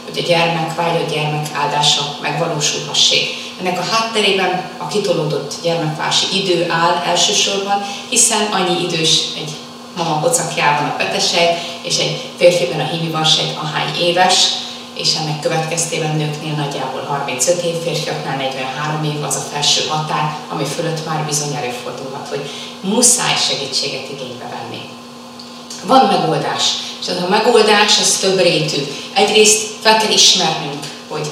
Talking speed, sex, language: 130 wpm, female, Hungarian